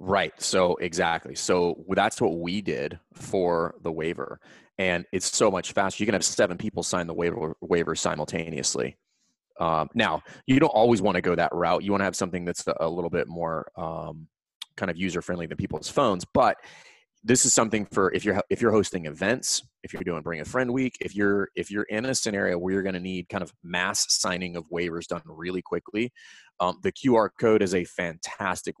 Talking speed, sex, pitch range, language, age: 205 wpm, male, 85-95 Hz, English, 30-49